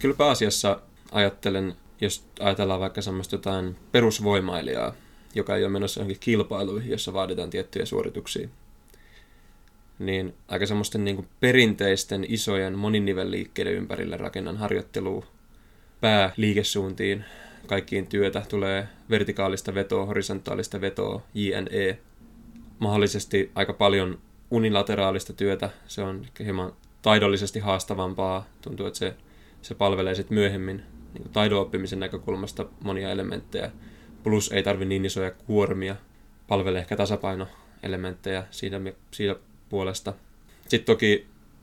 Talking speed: 110 wpm